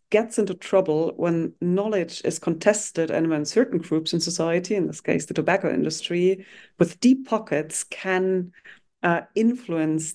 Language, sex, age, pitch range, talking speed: English, female, 30-49, 155-195 Hz, 150 wpm